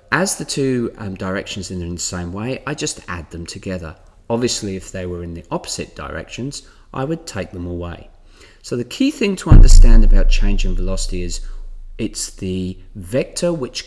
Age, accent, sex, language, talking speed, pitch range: 40-59, British, male, English, 185 wpm, 90-120 Hz